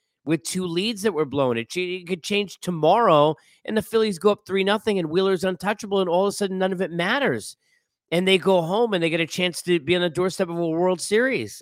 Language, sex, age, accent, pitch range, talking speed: English, male, 40-59, American, 115-170 Hz, 255 wpm